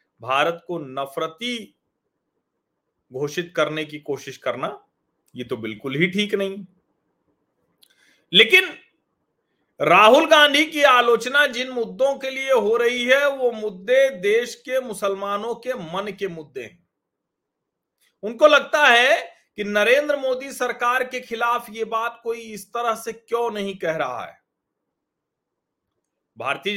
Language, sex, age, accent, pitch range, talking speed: Hindi, male, 40-59, native, 185-255 Hz, 130 wpm